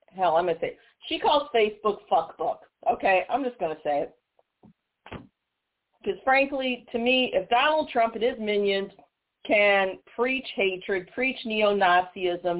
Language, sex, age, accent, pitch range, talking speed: English, female, 40-59, American, 180-255 Hz, 150 wpm